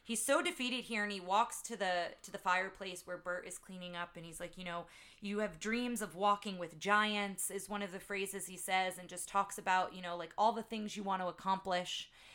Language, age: English, 30-49